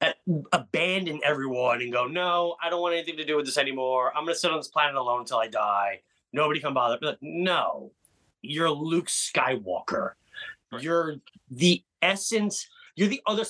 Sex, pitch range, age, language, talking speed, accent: male, 145-200 Hz, 30-49, English, 170 wpm, American